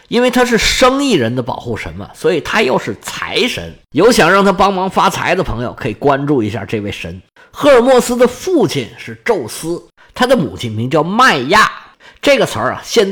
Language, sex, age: Chinese, male, 50-69